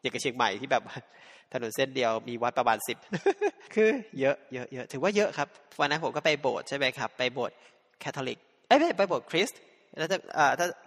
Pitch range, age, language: 135-175 Hz, 20-39, Thai